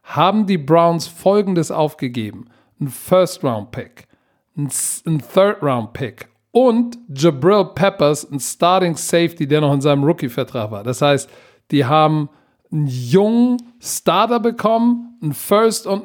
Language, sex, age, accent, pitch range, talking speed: German, male, 50-69, German, 155-240 Hz, 115 wpm